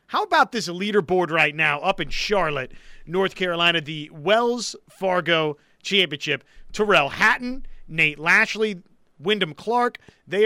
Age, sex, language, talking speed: 30-49, male, English, 125 wpm